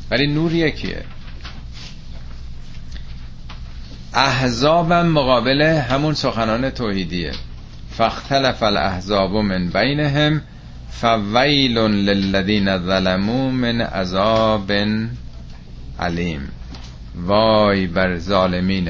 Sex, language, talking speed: male, Persian, 65 wpm